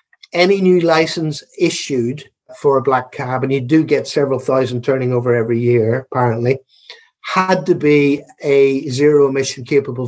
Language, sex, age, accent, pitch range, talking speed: English, male, 50-69, British, 130-160 Hz, 155 wpm